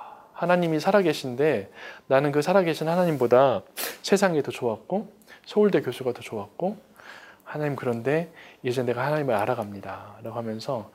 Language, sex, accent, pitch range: Korean, male, native, 125-175 Hz